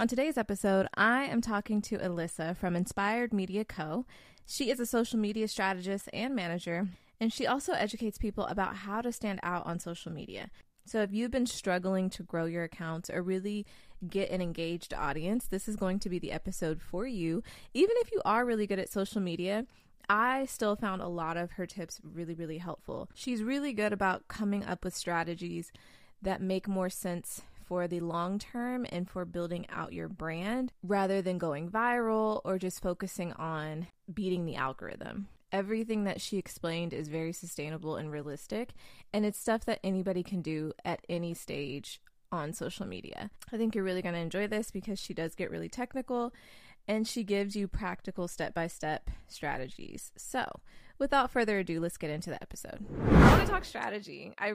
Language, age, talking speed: English, 20-39, 185 wpm